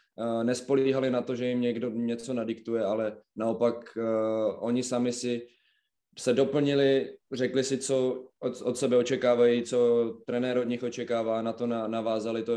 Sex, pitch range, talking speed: male, 110-125 Hz, 160 wpm